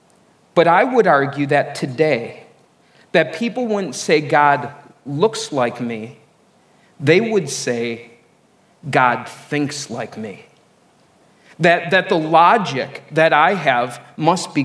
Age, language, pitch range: 40-59, English, 150-200 Hz